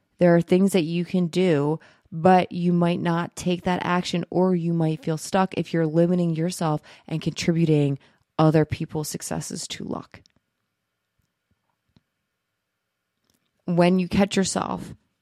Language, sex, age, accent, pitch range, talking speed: English, female, 20-39, American, 155-185 Hz, 135 wpm